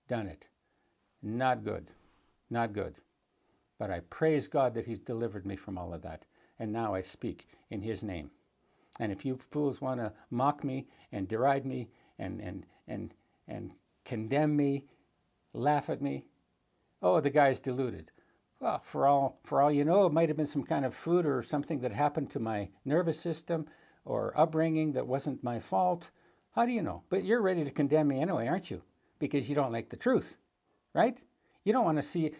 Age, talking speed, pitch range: 60-79, 190 wpm, 115-160 Hz